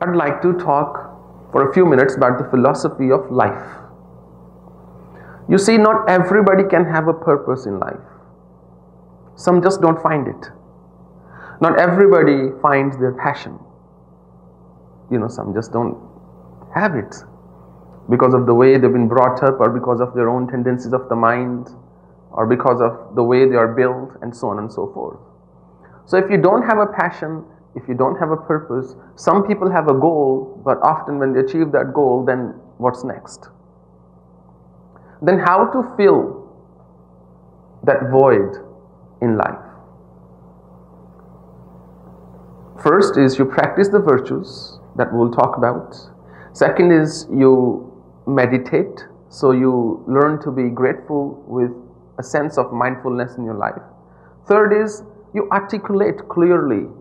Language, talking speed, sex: English, 145 wpm, male